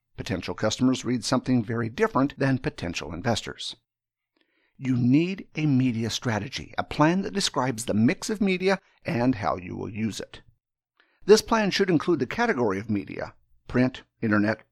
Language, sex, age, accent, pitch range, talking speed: English, male, 50-69, American, 110-150 Hz, 155 wpm